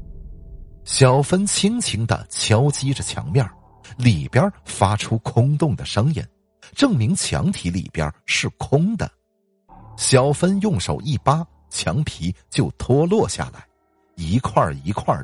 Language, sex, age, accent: Chinese, male, 50-69, native